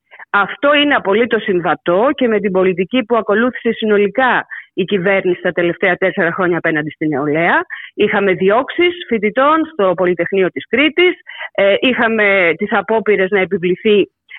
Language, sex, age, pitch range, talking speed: Greek, female, 30-49, 195-255 Hz, 135 wpm